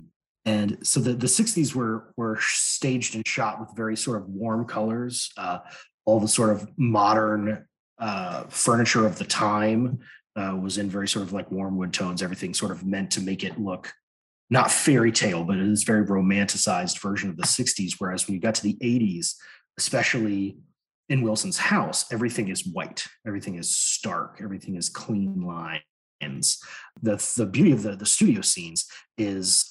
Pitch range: 105-135 Hz